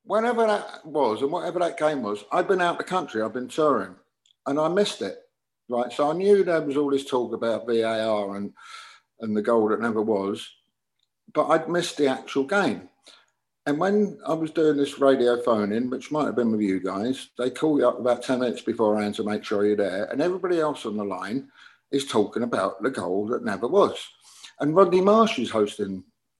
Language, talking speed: English, 205 wpm